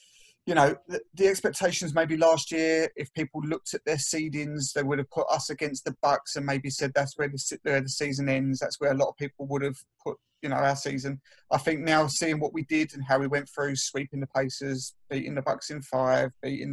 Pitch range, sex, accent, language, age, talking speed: 140-170 Hz, male, British, English, 30-49, 235 wpm